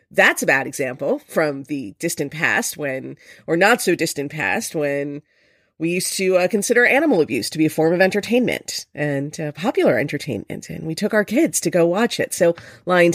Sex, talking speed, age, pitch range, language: female, 195 wpm, 30-49, 150-190 Hz, English